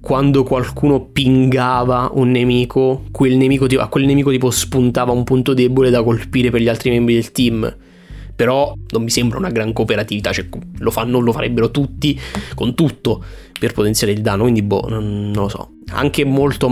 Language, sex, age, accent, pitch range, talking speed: Italian, male, 20-39, native, 110-130 Hz, 180 wpm